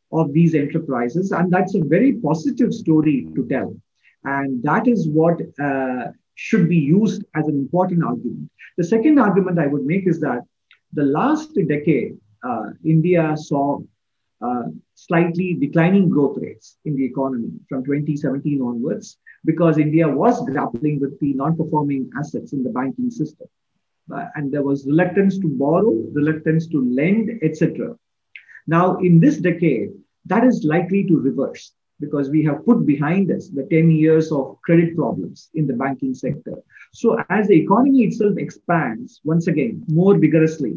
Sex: male